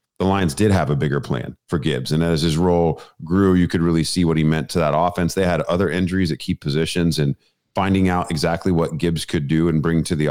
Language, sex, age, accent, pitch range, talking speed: English, male, 40-59, American, 80-95 Hz, 250 wpm